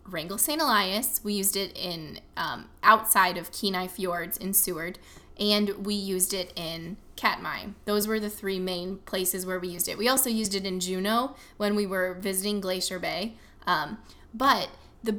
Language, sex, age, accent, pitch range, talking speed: English, female, 20-39, American, 185-225 Hz, 180 wpm